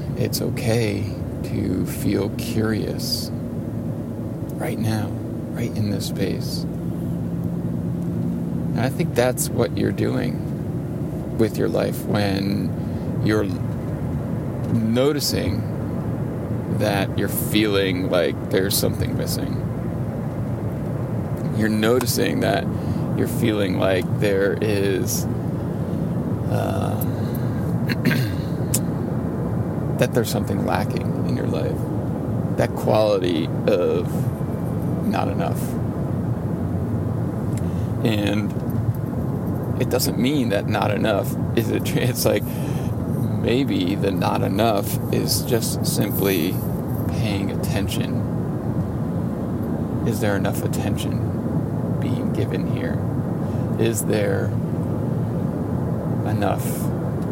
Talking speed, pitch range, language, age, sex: 85 wpm, 105-125 Hz, English, 30-49, male